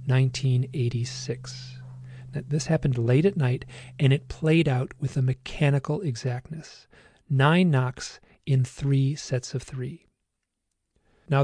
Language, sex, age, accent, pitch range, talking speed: English, male, 40-59, American, 120-150 Hz, 115 wpm